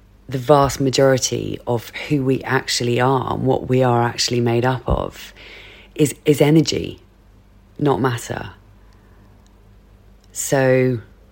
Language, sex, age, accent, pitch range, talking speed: English, female, 30-49, British, 115-140 Hz, 115 wpm